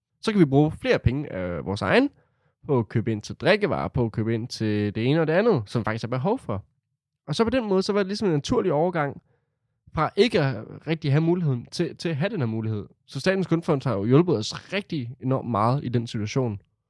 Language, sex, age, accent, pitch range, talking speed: Danish, male, 20-39, native, 115-150 Hz, 240 wpm